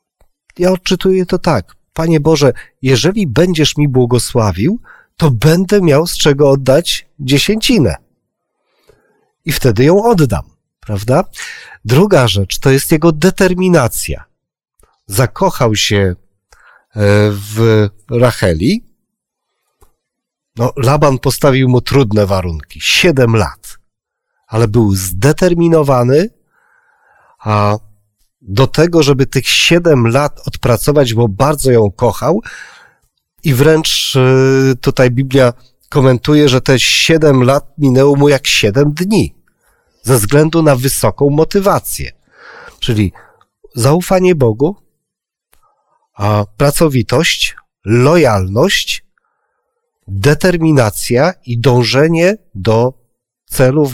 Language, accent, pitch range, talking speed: Polish, native, 120-160 Hz, 95 wpm